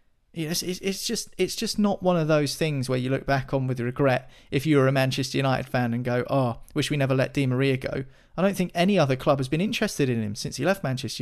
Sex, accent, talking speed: male, British, 260 wpm